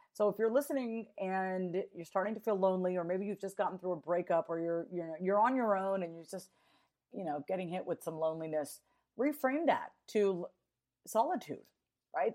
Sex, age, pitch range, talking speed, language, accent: female, 40-59, 160-195 Hz, 195 wpm, English, American